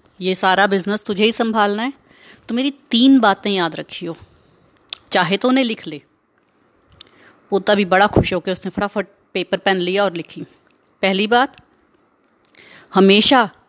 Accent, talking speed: native, 145 wpm